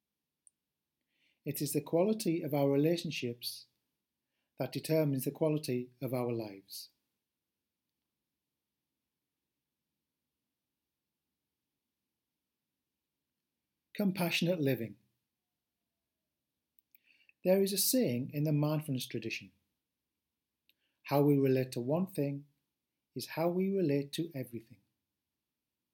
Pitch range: 115-150 Hz